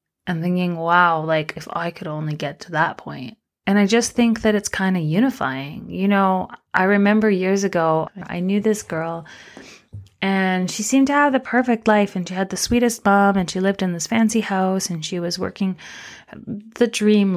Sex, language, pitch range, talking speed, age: female, English, 170-205 Hz, 200 wpm, 30-49